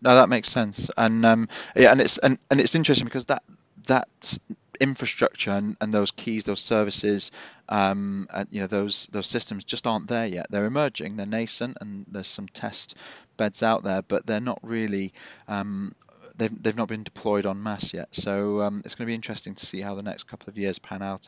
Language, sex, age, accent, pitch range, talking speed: English, male, 30-49, British, 100-115 Hz, 210 wpm